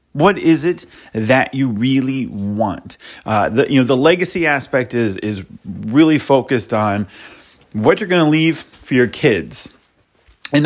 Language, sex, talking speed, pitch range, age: English, male, 160 wpm, 120-165 Hz, 30-49